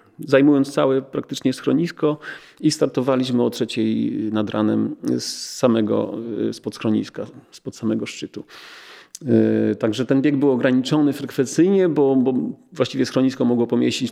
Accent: native